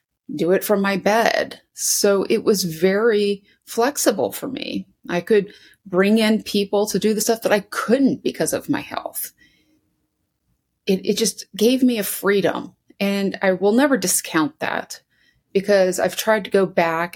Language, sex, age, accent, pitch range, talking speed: English, female, 30-49, American, 170-220 Hz, 165 wpm